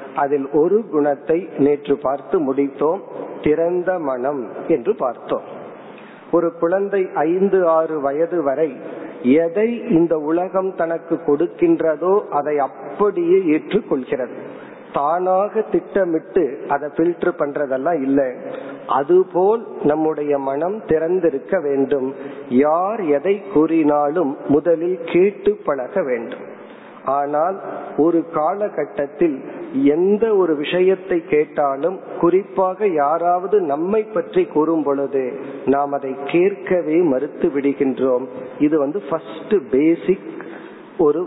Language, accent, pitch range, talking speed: Tamil, native, 145-195 Hz, 75 wpm